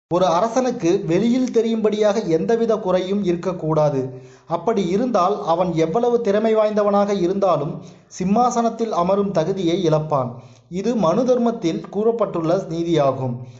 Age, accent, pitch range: 30-49, native, 160-220 Hz